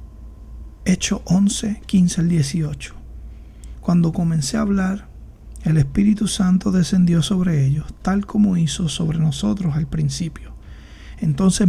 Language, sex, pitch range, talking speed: Spanish, male, 150-190 Hz, 120 wpm